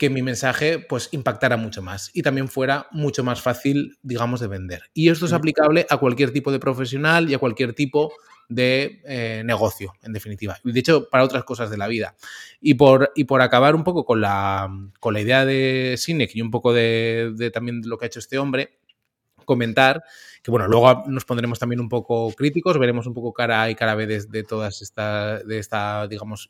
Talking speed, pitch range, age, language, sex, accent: 215 wpm, 115-140 Hz, 20-39, English, male, Spanish